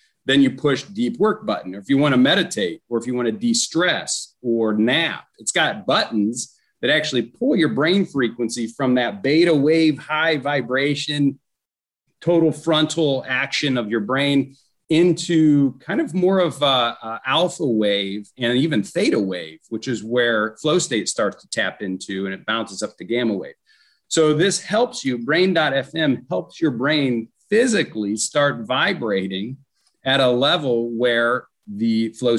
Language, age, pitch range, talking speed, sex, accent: English, 40-59, 110-150 Hz, 165 wpm, male, American